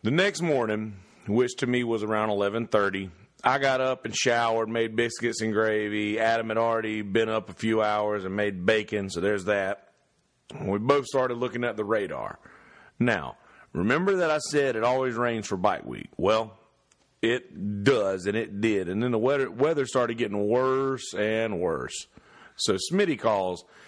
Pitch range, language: 105-125 Hz, English